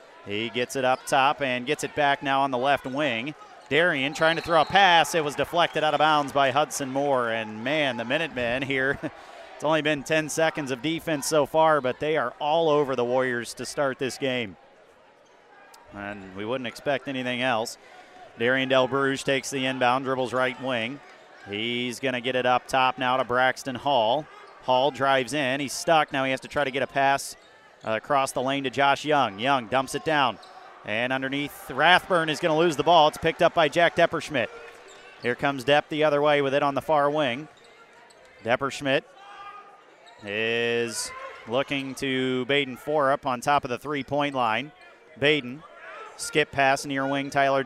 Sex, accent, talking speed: male, American, 190 wpm